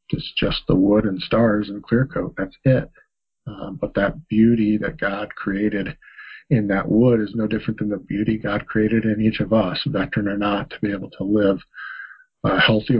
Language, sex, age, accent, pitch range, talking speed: English, male, 50-69, American, 100-115 Hz, 200 wpm